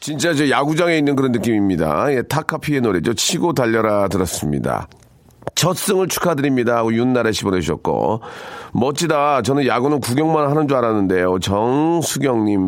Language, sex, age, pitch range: Korean, male, 40-59, 95-130 Hz